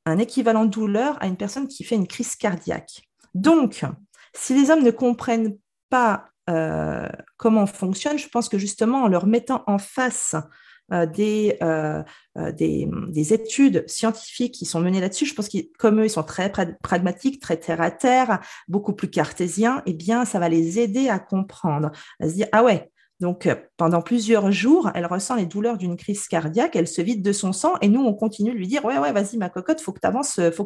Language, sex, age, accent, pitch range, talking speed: French, female, 40-59, French, 175-230 Hz, 210 wpm